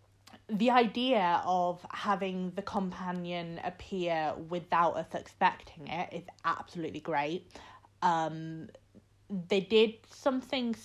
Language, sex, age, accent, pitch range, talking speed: English, female, 30-49, British, 160-205 Hz, 100 wpm